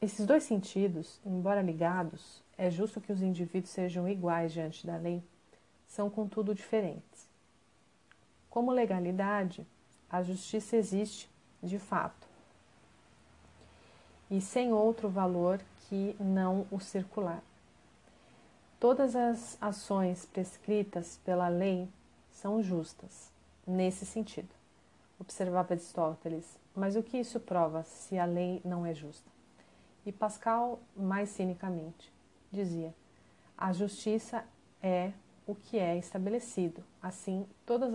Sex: female